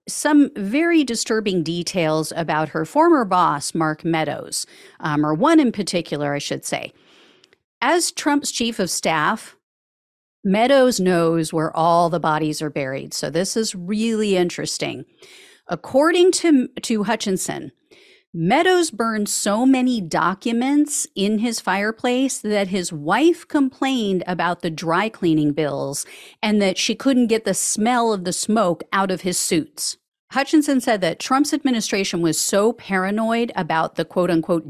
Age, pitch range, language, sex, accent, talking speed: 50-69, 175-260 Hz, English, female, American, 140 wpm